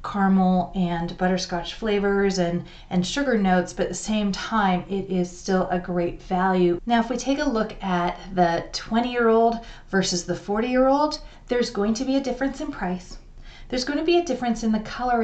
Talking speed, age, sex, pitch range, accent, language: 190 wpm, 30-49, female, 180-235 Hz, American, English